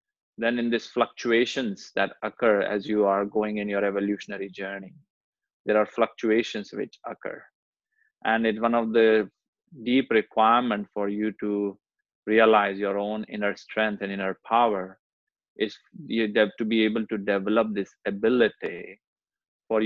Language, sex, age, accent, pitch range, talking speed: English, male, 20-39, Indian, 105-115 Hz, 145 wpm